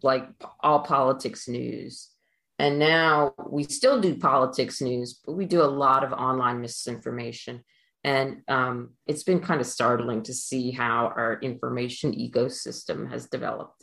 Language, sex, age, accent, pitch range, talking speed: English, female, 30-49, American, 125-150 Hz, 150 wpm